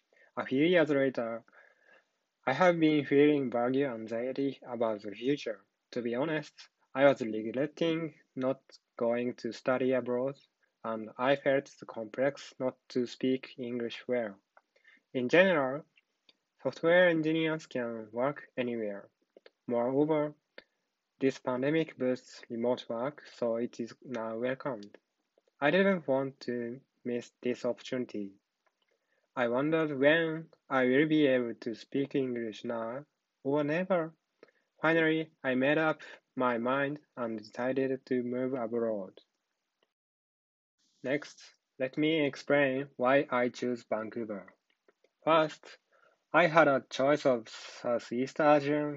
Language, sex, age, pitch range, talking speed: English, male, 20-39, 120-145 Hz, 120 wpm